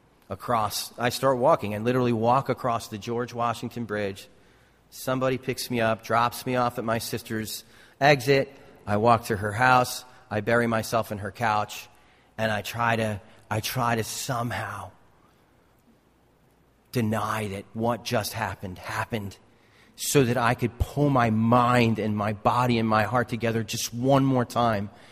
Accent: American